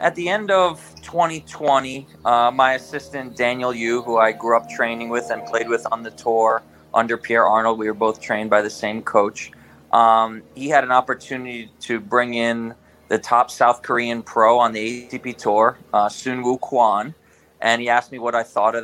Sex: male